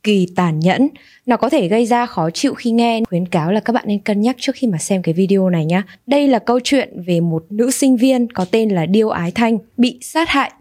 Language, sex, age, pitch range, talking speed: Vietnamese, female, 20-39, 180-245 Hz, 260 wpm